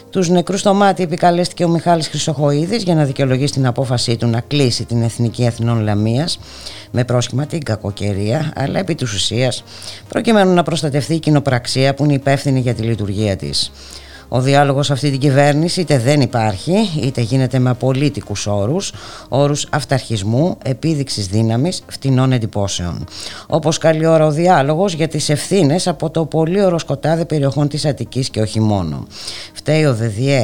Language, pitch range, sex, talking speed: Greek, 115-160 Hz, female, 160 wpm